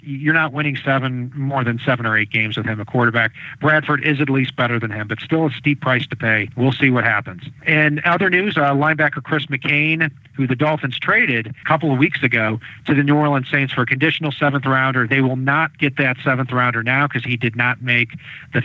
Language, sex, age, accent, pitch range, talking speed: English, male, 40-59, American, 125-150 Hz, 230 wpm